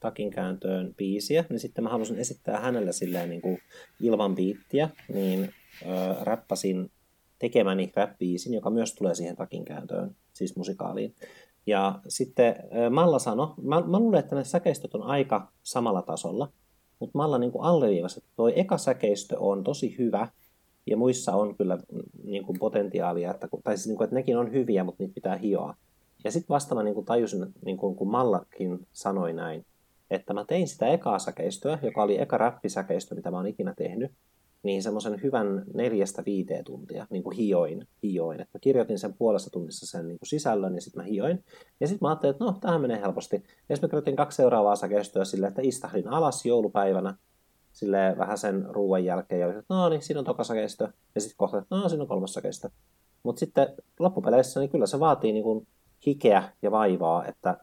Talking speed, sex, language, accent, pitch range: 175 wpm, male, Finnish, native, 95-120 Hz